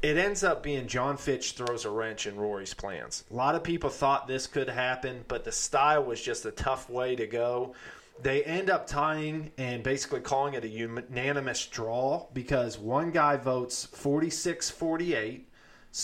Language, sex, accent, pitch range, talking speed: English, male, American, 120-145 Hz, 170 wpm